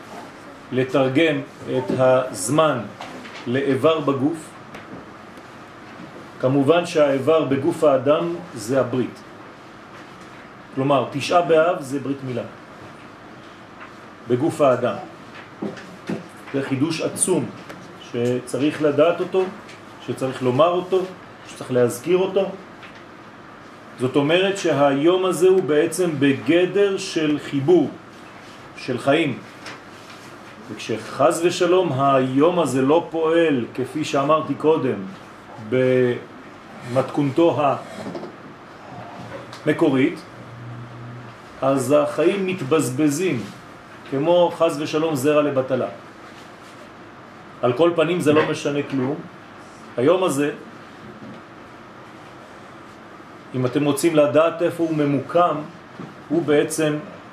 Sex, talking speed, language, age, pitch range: male, 85 wpm, French, 40-59, 130-165 Hz